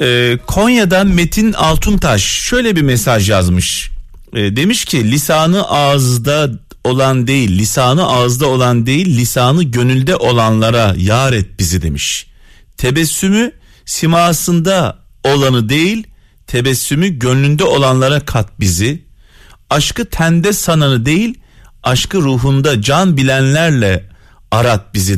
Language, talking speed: Turkish, 100 wpm